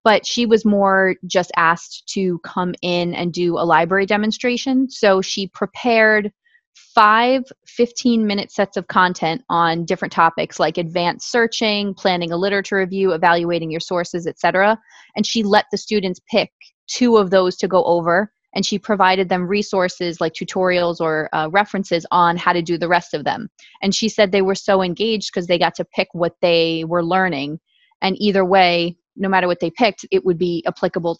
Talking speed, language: 185 wpm, English